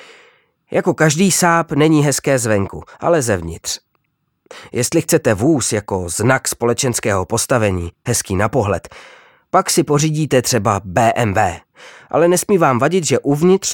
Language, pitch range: Czech, 105-145 Hz